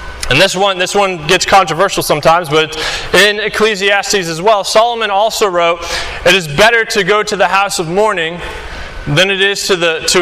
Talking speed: 190 wpm